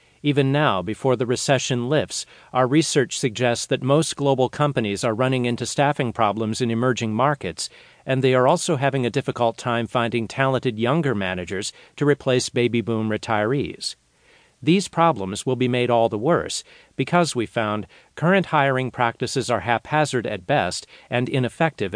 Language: English